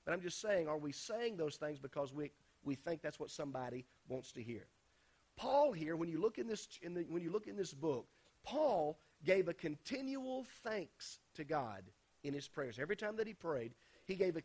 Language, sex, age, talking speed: English, male, 40-59, 210 wpm